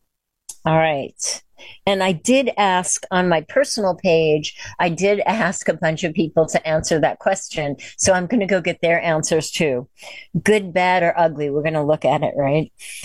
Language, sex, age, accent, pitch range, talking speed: English, female, 50-69, American, 155-195 Hz, 190 wpm